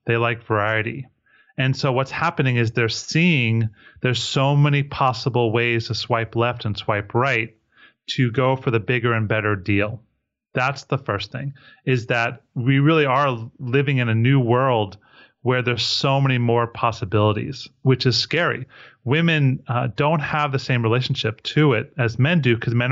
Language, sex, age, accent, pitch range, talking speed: English, male, 30-49, American, 120-145 Hz, 175 wpm